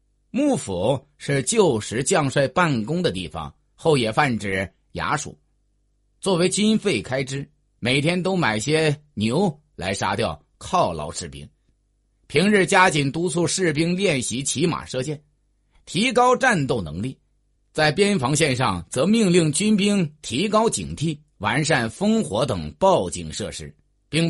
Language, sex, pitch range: Chinese, male, 125-190 Hz